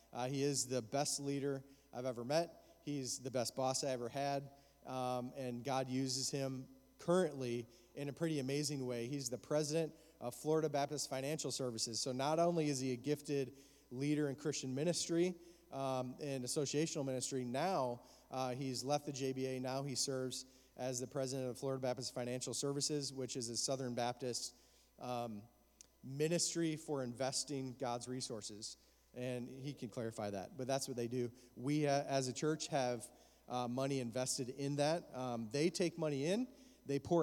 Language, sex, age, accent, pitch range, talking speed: English, male, 30-49, American, 130-155 Hz, 170 wpm